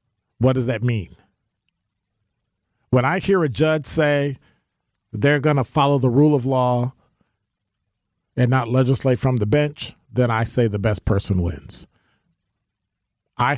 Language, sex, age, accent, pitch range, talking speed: English, male, 40-59, American, 105-130 Hz, 140 wpm